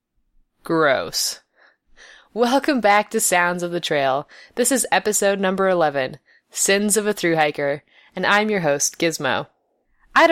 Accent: American